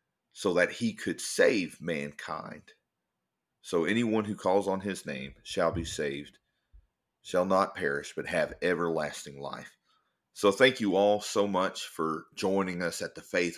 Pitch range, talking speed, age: 85-105 Hz, 155 wpm, 40-59